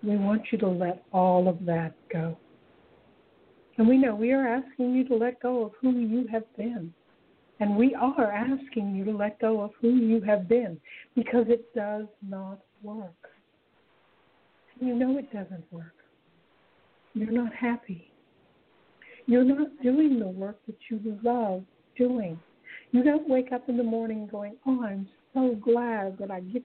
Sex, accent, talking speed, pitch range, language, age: female, American, 170 wpm, 205-245 Hz, English, 60-79